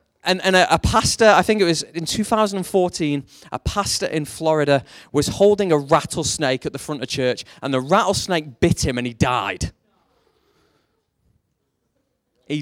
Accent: British